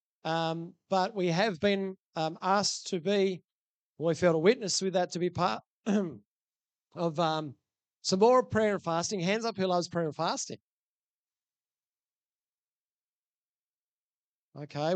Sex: male